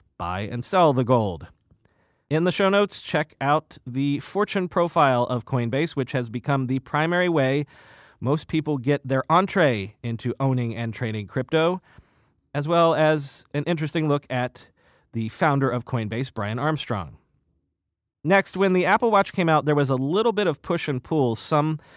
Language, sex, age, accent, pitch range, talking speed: English, male, 30-49, American, 115-155 Hz, 170 wpm